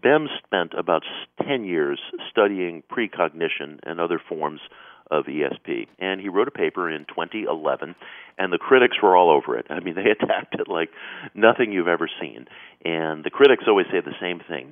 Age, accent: 50-69, American